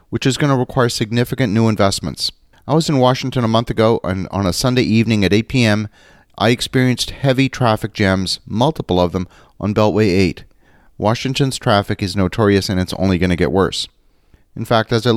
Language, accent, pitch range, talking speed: English, American, 95-120 Hz, 190 wpm